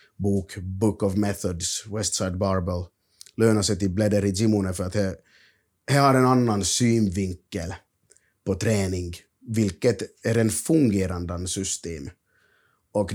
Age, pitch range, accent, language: 30-49, 95-125 Hz, Finnish, Swedish